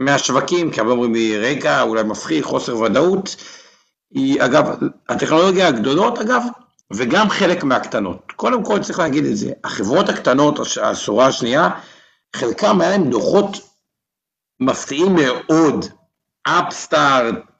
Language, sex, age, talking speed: Hebrew, male, 60-79, 125 wpm